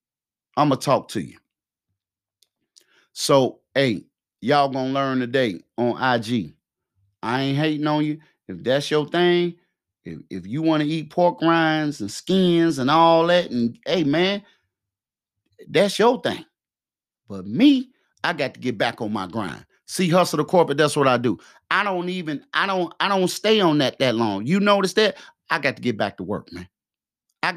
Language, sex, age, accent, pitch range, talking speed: English, male, 30-49, American, 130-185 Hz, 185 wpm